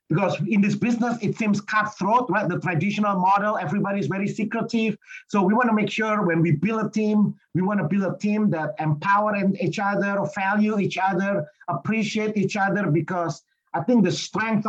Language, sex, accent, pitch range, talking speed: English, male, Indonesian, 175-215 Hz, 190 wpm